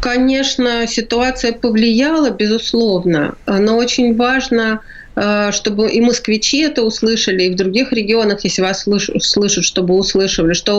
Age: 30-49